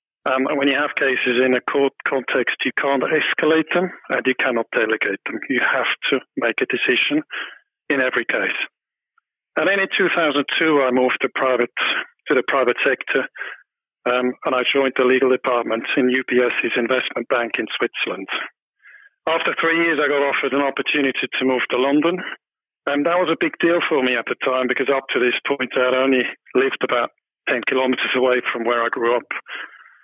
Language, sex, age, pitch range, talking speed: English, male, 40-59, 125-150 Hz, 190 wpm